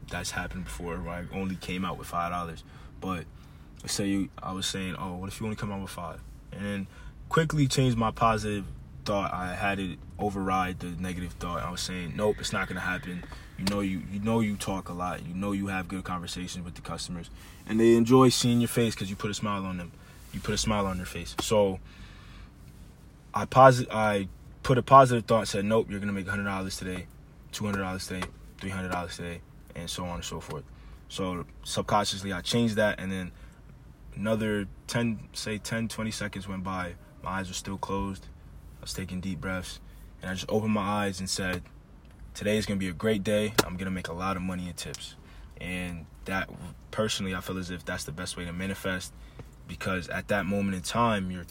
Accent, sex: American, male